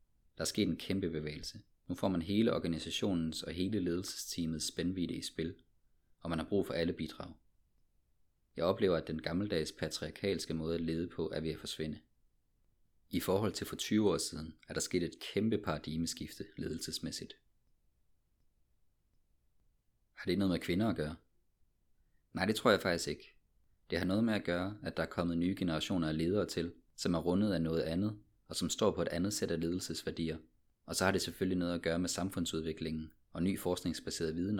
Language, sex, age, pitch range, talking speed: Danish, male, 30-49, 80-90 Hz, 190 wpm